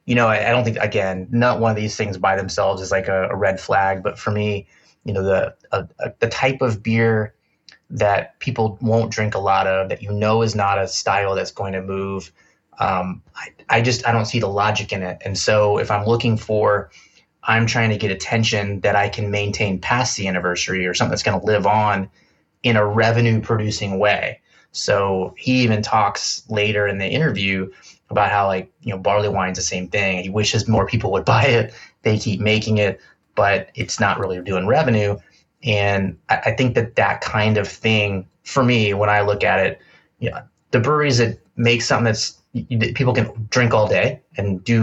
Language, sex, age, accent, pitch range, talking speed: English, male, 20-39, American, 100-115 Hz, 210 wpm